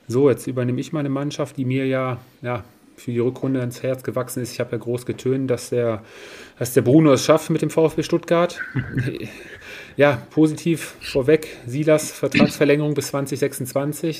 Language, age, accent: German, 30-49, German